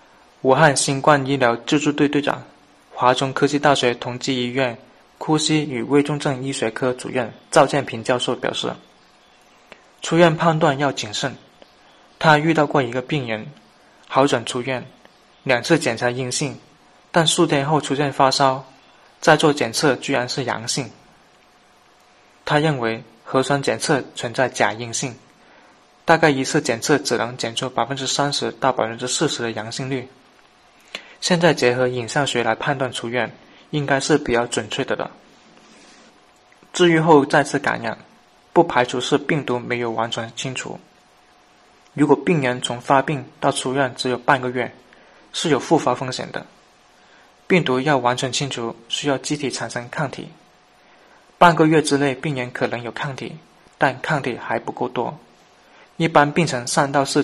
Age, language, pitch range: 20-39, Chinese, 125-150 Hz